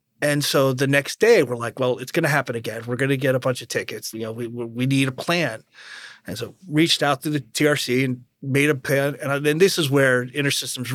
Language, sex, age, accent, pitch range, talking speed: English, male, 30-49, American, 130-160 Hz, 250 wpm